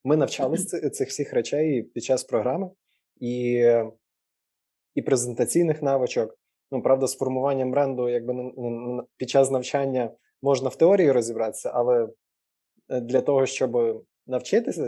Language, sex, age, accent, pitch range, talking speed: Ukrainian, male, 20-39, native, 125-155 Hz, 120 wpm